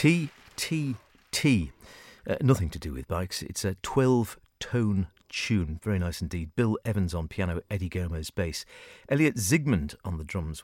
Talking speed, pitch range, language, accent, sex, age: 140 wpm, 85-115 Hz, English, British, male, 50-69